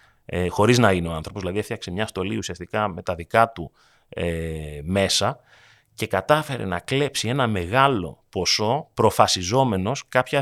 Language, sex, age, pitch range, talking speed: Greek, male, 30-49, 95-130 Hz, 150 wpm